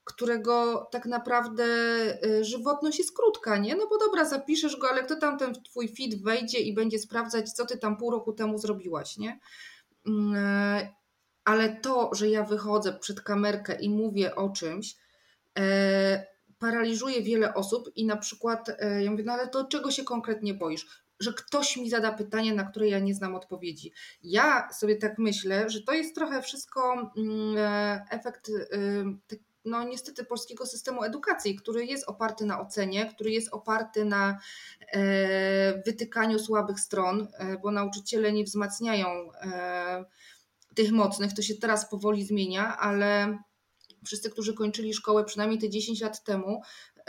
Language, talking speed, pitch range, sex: Polish, 150 wpm, 205-235 Hz, female